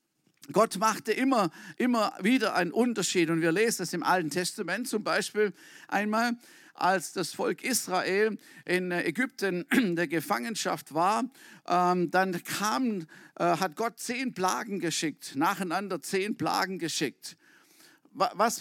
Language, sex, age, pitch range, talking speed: German, male, 50-69, 180-250 Hz, 125 wpm